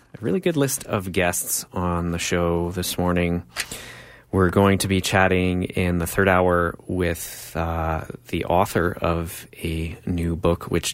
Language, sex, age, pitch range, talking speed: English, male, 30-49, 85-105 Hz, 155 wpm